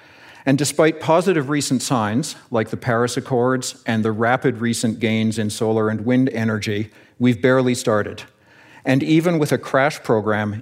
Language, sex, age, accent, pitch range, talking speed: English, male, 50-69, American, 115-150 Hz, 160 wpm